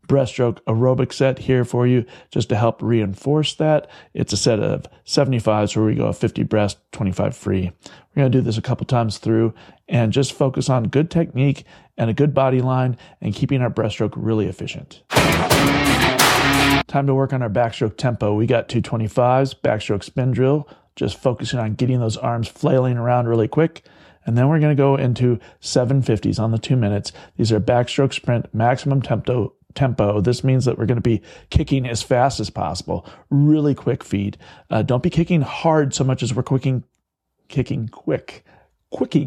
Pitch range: 110-135 Hz